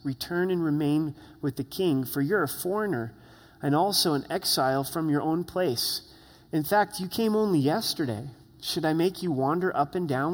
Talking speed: 185 wpm